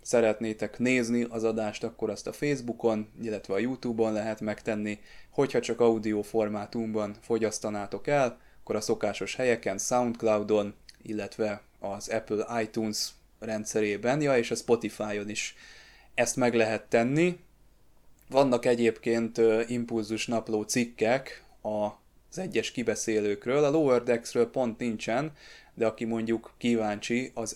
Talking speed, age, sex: 120 wpm, 20-39, male